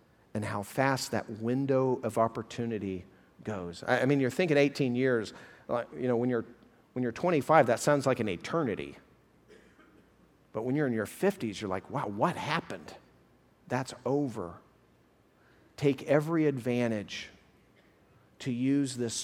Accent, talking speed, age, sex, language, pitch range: American, 140 wpm, 50-69, male, English, 120-165 Hz